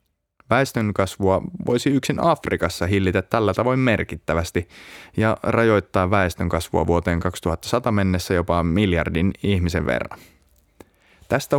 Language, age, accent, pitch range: Finnish, 30-49, native, 85-105 Hz